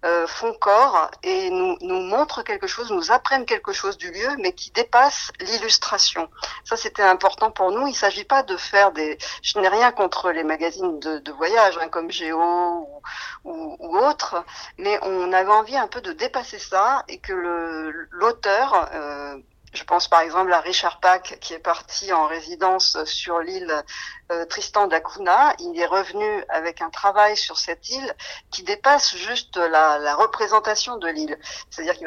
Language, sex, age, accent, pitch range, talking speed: French, female, 50-69, French, 170-265 Hz, 180 wpm